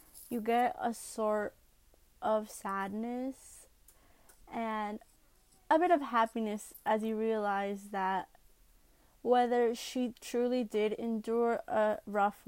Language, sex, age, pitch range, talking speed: English, female, 20-39, 205-235 Hz, 105 wpm